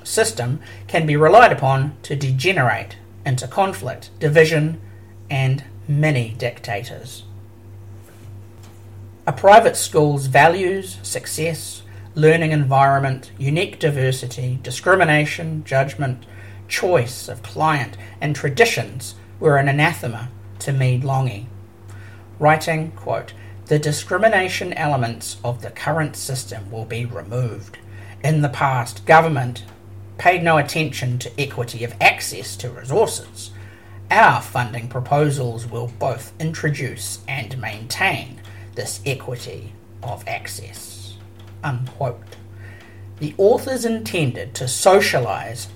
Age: 50-69